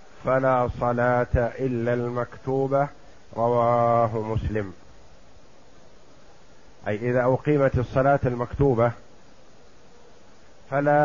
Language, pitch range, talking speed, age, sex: Arabic, 120-140 Hz, 65 wpm, 50-69, male